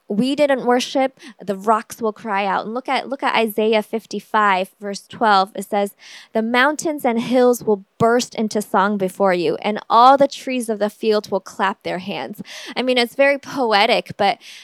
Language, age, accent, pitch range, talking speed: English, 10-29, American, 200-245 Hz, 190 wpm